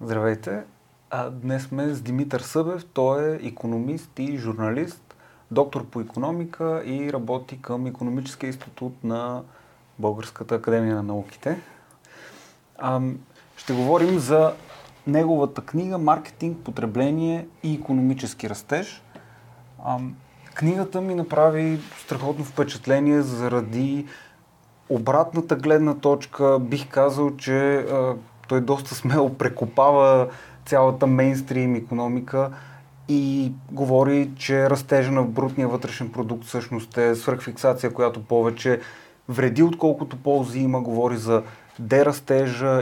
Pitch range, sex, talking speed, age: 125-145 Hz, male, 100 wpm, 30-49